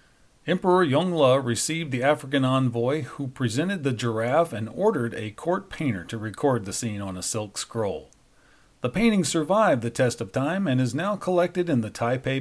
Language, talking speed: English, 180 wpm